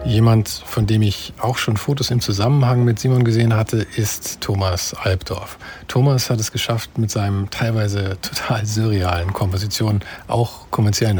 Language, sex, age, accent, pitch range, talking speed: German, male, 50-69, German, 95-115 Hz, 150 wpm